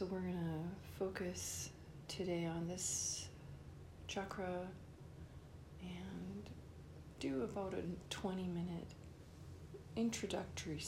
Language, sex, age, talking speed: English, female, 40-59, 90 wpm